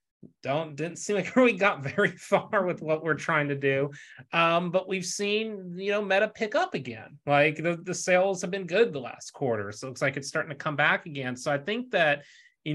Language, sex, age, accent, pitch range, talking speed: English, male, 30-49, American, 130-170 Hz, 225 wpm